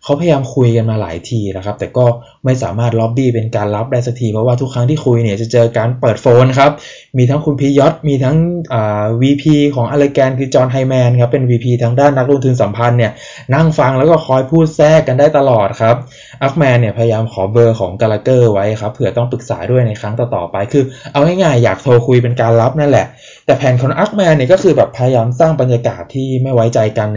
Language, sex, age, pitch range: Thai, male, 20-39, 115-140 Hz